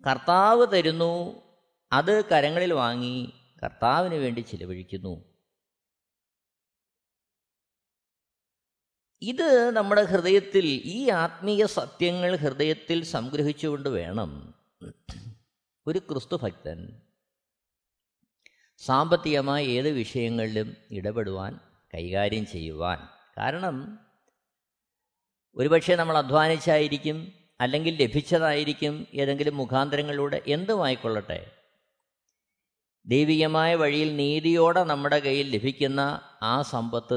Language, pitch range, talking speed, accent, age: Malayalam, 110-160 Hz, 70 wpm, native, 20-39